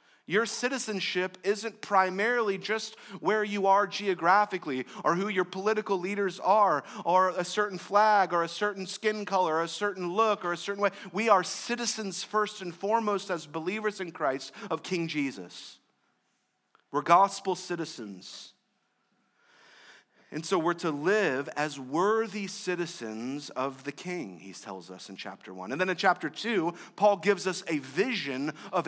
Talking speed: 160 wpm